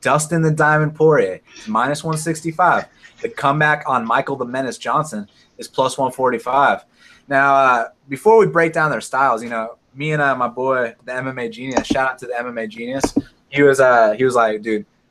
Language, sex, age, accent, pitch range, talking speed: English, male, 20-39, American, 130-175 Hz, 185 wpm